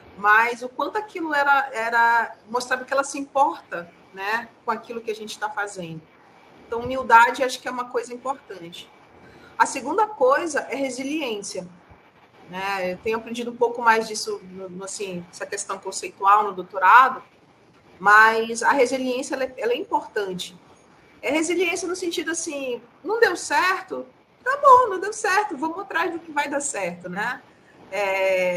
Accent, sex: Brazilian, female